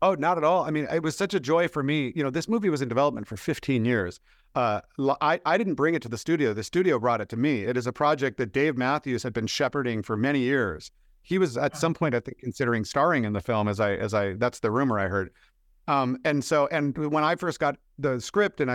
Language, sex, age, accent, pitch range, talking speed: English, male, 50-69, American, 120-145 Hz, 265 wpm